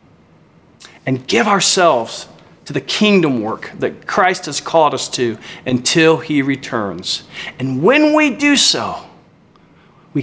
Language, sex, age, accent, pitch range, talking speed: English, male, 40-59, American, 125-170 Hz, 130 wpm